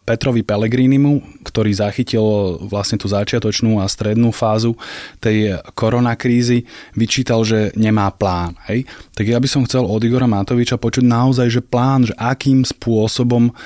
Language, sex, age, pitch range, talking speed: Slovak, male, 20-39, 105-115 Hz, 140 wpm